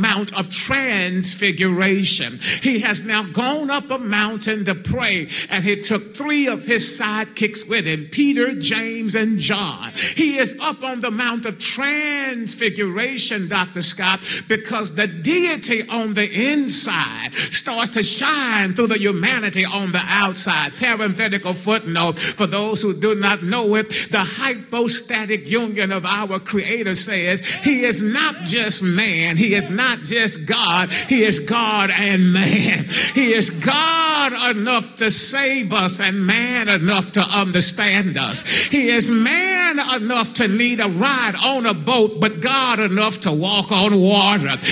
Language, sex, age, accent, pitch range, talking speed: English, male, 50-69, American, 200-240 Hz, 150 wpm